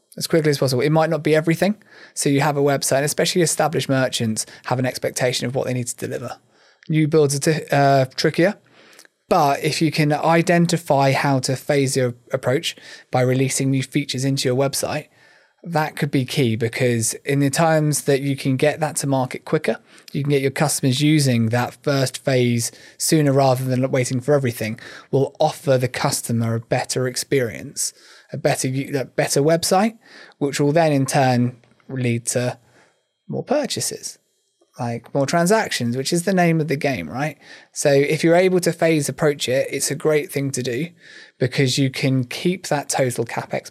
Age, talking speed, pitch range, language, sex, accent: 20-39, 180 wpm, 125-155 Hz, English, male, British